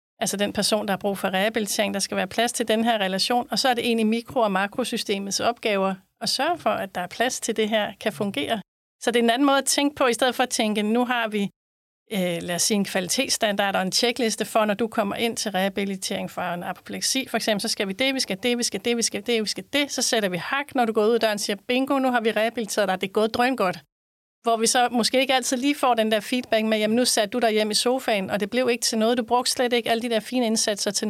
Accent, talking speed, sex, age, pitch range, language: native, 285 wpm, female, 30-49, 200-235 Hz, Danish